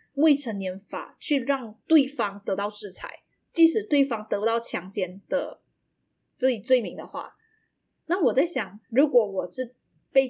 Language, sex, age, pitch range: Chinese, female, 20-39, 205-290 Hz